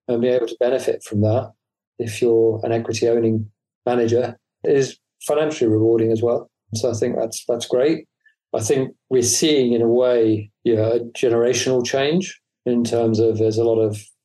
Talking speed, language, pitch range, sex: 180 wpm, English, 110-130 Hz, male